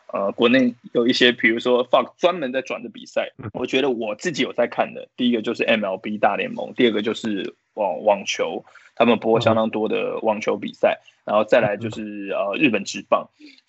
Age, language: 20-39, Chinese